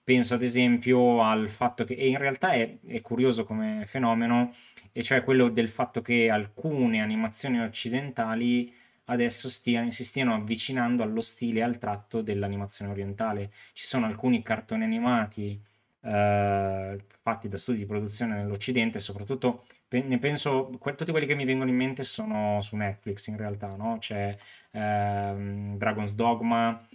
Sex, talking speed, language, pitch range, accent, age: male, 145 wpm, Italian, 105-125 Hz, native, 20-39